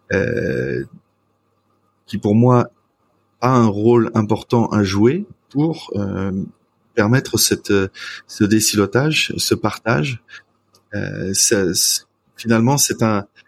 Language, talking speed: French, 95 wpm